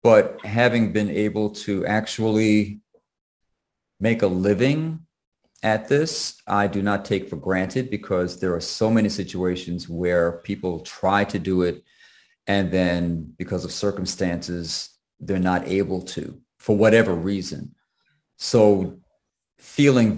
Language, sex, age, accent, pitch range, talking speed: English, male, 40-59, American, 90-110 Hz, 130 wpm